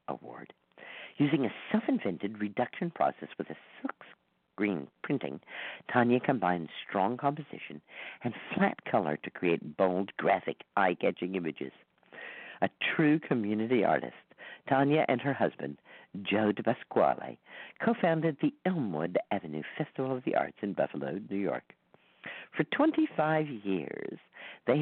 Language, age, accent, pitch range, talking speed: English, 50-69, American, 100-155 Hz, 130 wpm